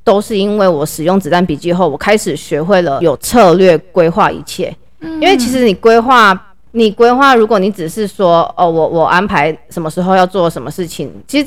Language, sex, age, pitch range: Chinese, female, 20-39, 165-210 Hz